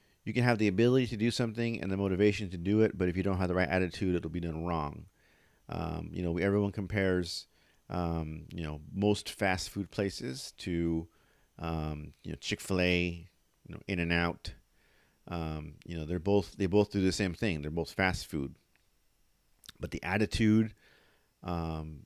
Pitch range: 80-95 Hz